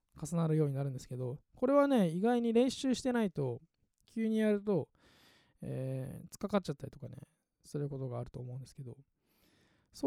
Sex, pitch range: male, 135-205 Hz